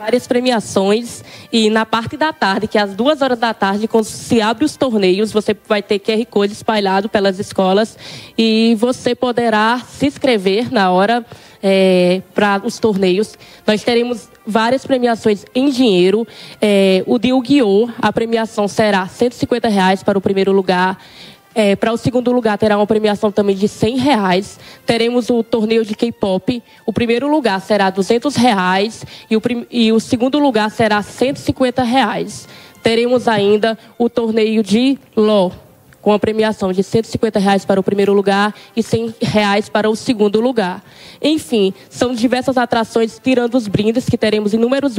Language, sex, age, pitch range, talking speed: Portuguese, female, 20-39, 200-240 Hz, 160 wpm